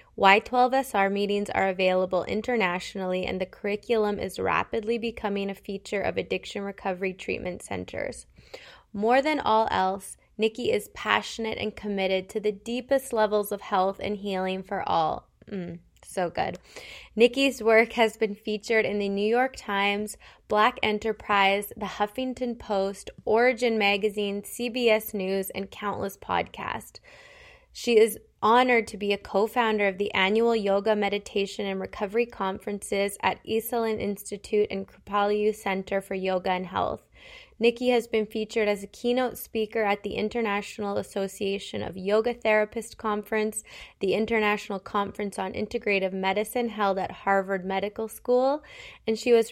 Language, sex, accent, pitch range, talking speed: English, female, American, 195-225 Hz, 140 wpm